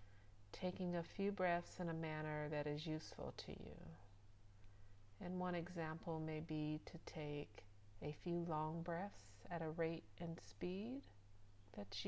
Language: English